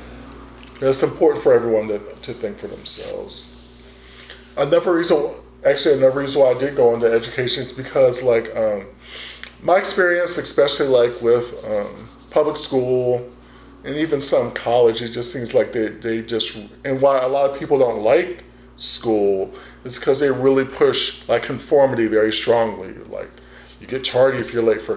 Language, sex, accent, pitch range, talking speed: English, male, American, 115-160 Hz, 165 wpm